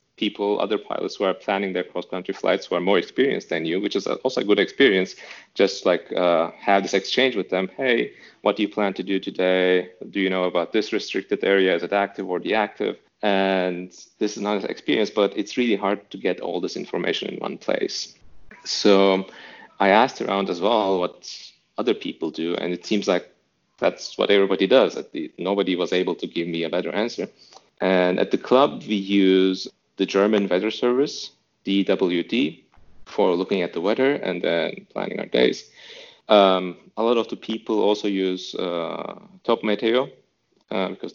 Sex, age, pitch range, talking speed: male, 30-49, 90-105 Hz, 185 wpm